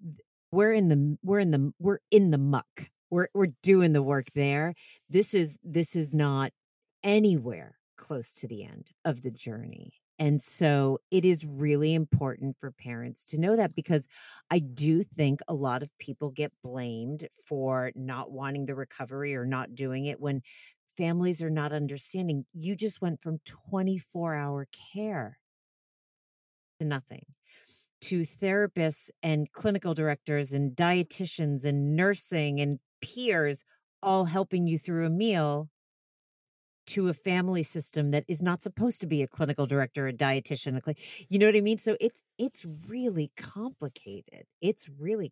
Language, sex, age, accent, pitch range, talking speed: English, female, 40-59, American, 140-180 Hz, 160 wpm